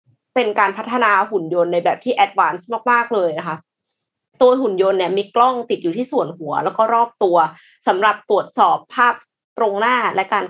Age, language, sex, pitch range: 20-39, Thai, female, 190-250 Hz